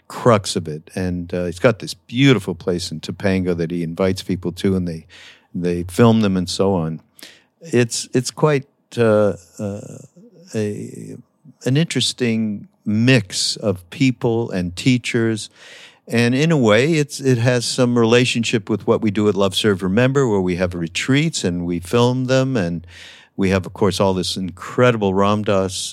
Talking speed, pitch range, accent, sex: 165 wpm, 90-125 Hz, American, male